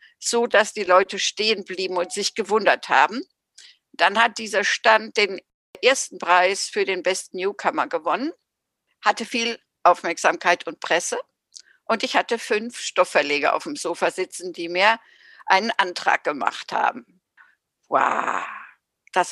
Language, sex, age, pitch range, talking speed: German, female, 60-79, 190-240 Hz, 135 wpm